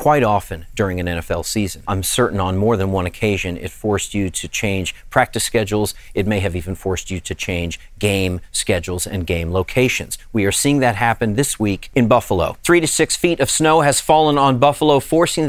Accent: American